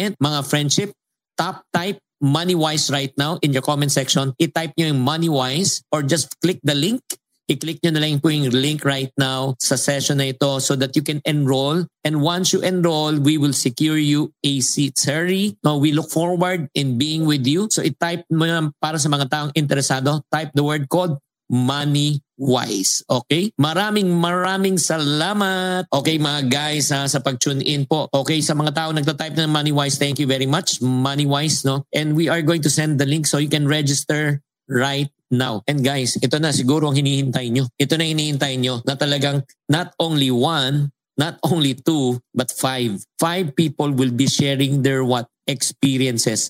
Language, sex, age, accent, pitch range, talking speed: English, male, 50-69, Filipino, 135-155 Hz, 180 wpm